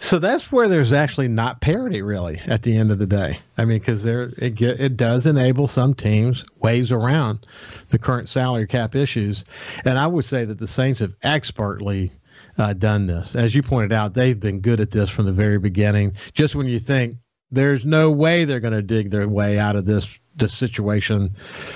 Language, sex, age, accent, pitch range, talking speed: English, male, 50-69, American, 105-130 Hz, 205 wpm